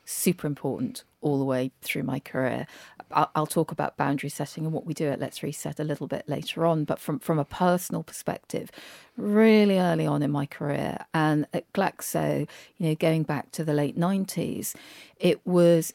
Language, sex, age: English, female, 40-59